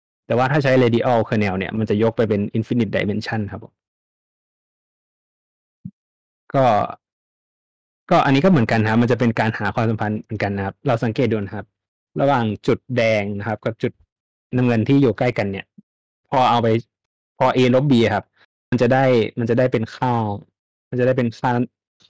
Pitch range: 105-125 Hz